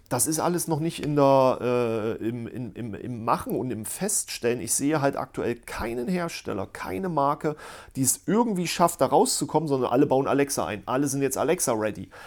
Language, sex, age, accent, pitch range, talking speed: German, male, 40-59, German, 120-160 Hz, 170 wpm